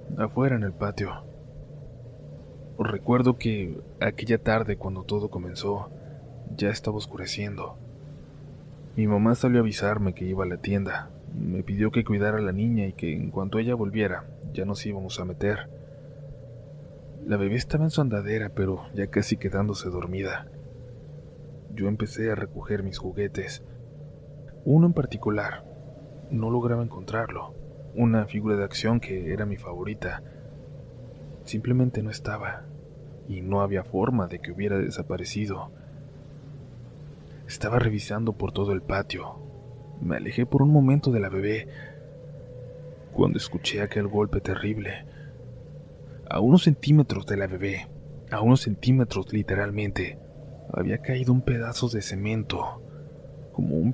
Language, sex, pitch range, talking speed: Spanish, male, 100-140 Hz, 135 wpm